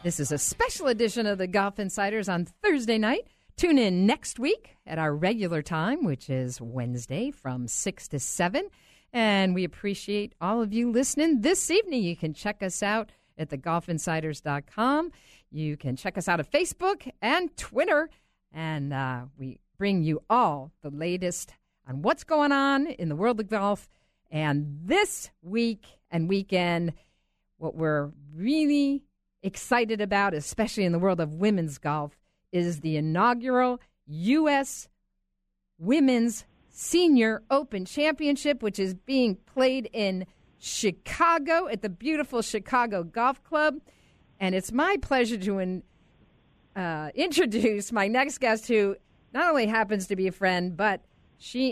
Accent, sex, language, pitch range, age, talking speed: American, female, English, 165-255 Hz, 50-69, 145 wpm